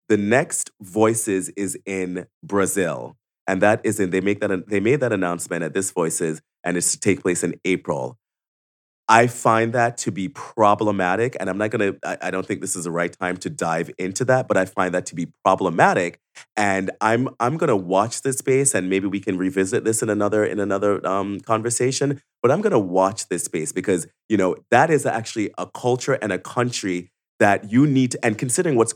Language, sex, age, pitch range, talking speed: English, male, 30-49, 95-120 Hz, 205 wpm